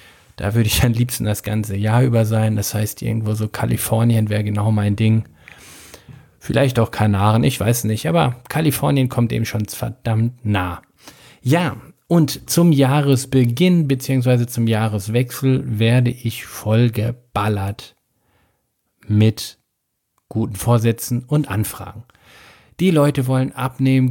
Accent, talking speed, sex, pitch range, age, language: German, 130 wpm, male, 110-135 Hz, 50-69, German